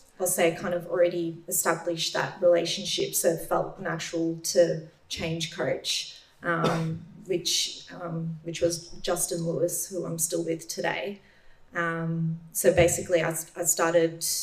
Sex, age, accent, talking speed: female, 30-49, Australian, 140 wpm